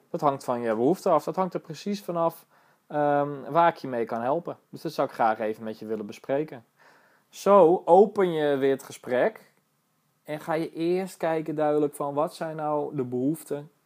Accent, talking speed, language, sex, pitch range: Dutch, 195 wpm, Dutch, male, 120-170 Hz